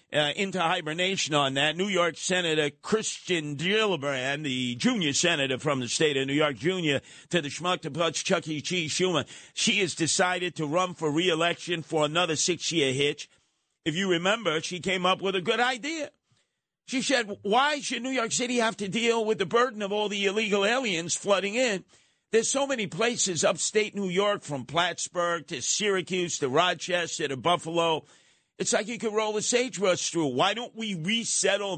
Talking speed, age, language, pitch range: 185 wpm, 50-69, English, 160-205 Hz